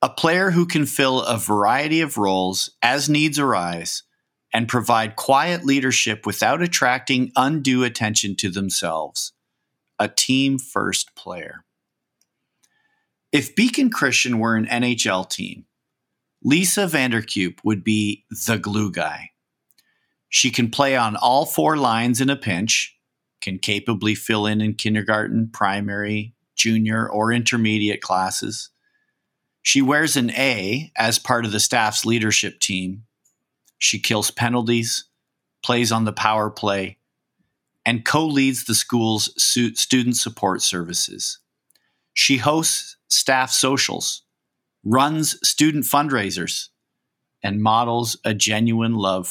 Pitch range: 105-135 Hz